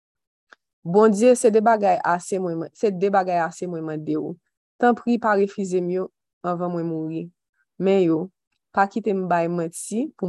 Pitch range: 170-200 Hz